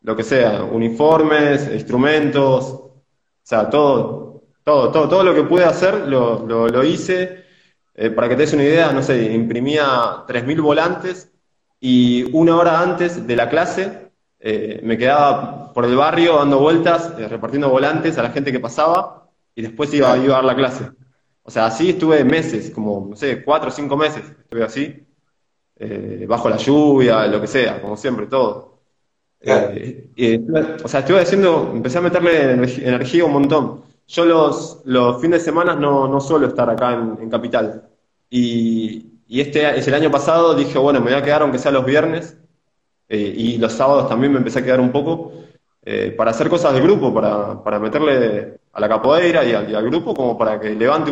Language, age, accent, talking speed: Spanish, 20-39, Argentinian, 190 wpm